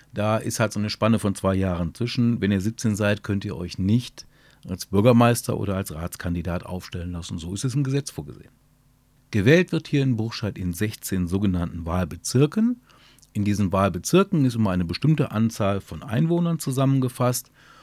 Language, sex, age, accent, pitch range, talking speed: German, male, 40-59, German, 95-125 Hz, 170 wpm